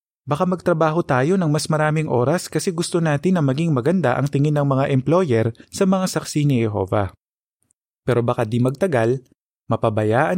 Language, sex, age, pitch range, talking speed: Filipino, male, 20-39, 115-155 Hz, 160 wpm